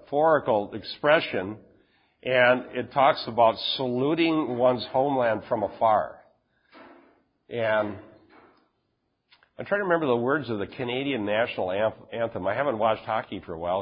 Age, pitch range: 50-69, 110-130 Hz